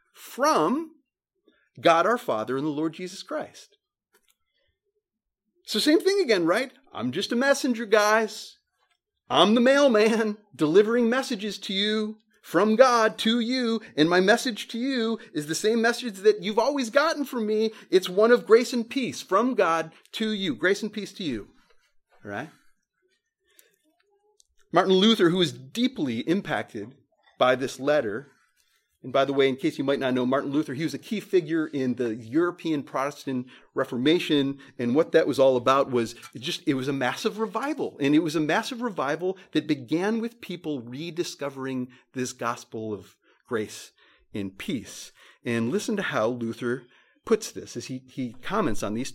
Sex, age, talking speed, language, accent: male, 30-49, 165 wpm, English, American